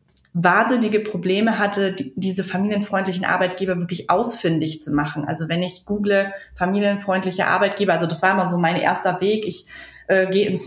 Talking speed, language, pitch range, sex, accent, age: 155 wpm, German, 175-200 Hz, female, German, 20-39